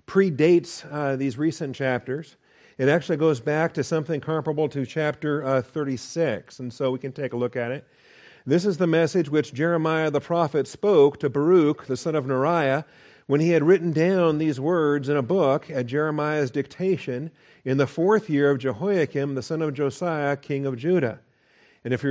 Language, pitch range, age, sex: English, 135-160 Hz, 50-69, male